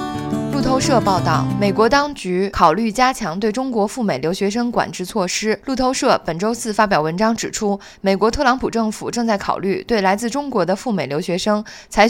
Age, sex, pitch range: 20-39, female, 180-235 Hz